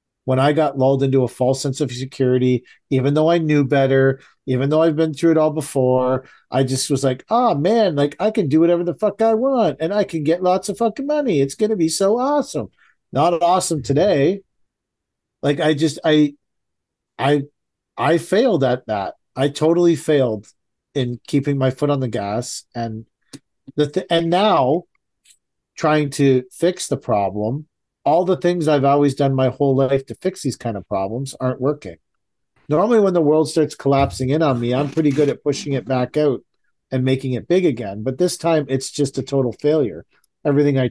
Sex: male